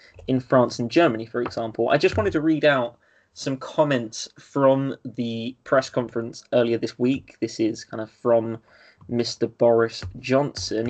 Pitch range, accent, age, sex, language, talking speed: 115-135 Hz, British, 20-39, male, English, 160 wpm